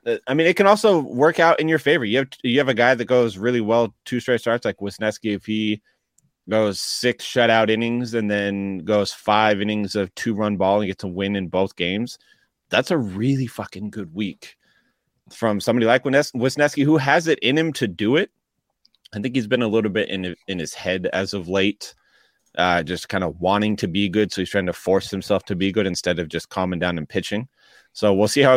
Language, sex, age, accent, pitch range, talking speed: English, male, 30-49, American, 100-125 Hz, 225 wpm